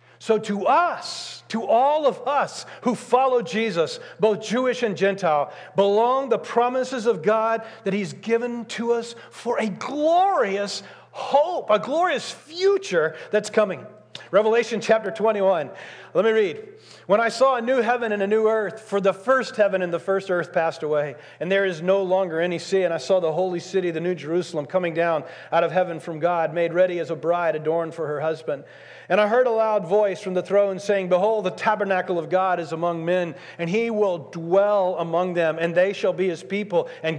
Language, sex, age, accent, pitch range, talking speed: English, male, 40-59, American, 170-220 Hz, 195 wpm